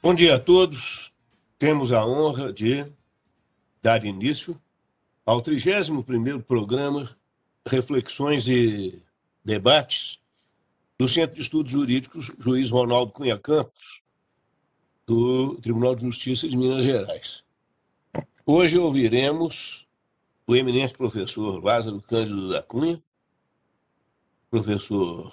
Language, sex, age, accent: Portuguese, male, 60-79, Brazilian